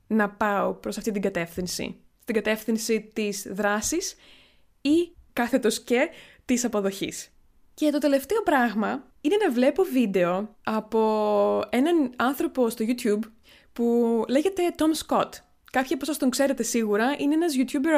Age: 20-39